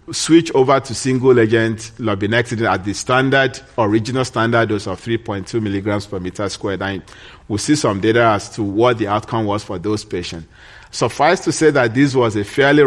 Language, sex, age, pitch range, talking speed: English, male, 40-59, 105-125 Hz, 175 wpm